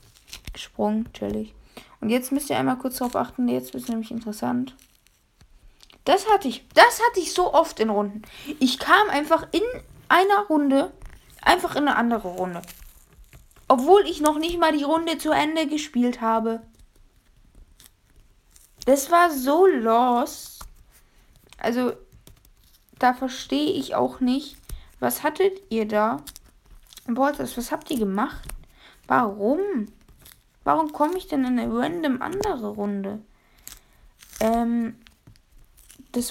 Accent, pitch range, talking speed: German, 210-275 Hz, 125 wpm